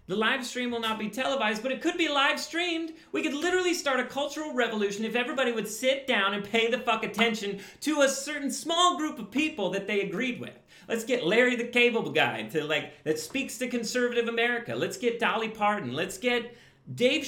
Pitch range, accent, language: 190-265 Hz, American, English